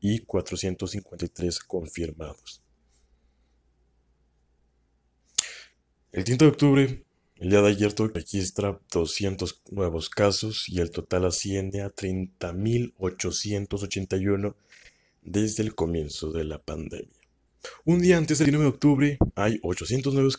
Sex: male